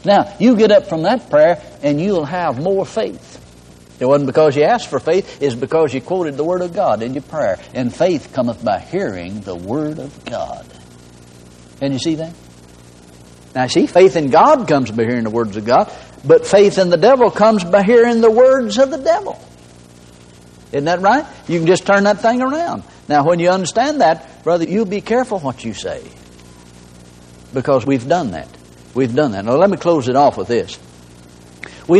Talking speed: 200 wpm